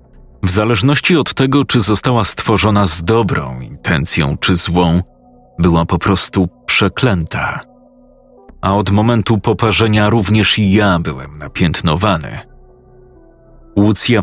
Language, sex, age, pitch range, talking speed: Polish, male, 40-59, 90-115 Hz, 110 wpm